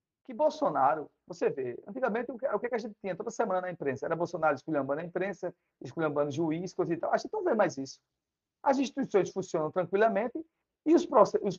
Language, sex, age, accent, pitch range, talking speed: Portuguese, male, 40-59, Brazilian, 140-215 Hz, 200 wpm